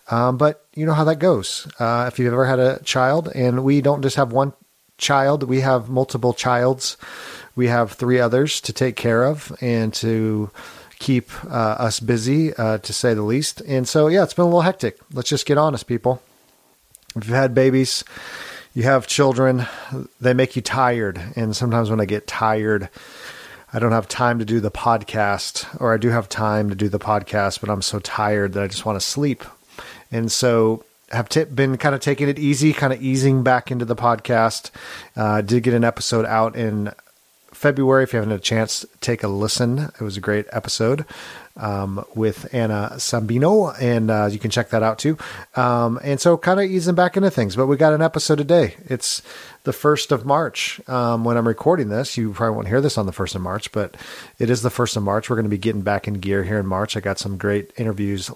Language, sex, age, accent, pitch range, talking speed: English, male, 40-59, American, 110-140 Hz, 215 wpm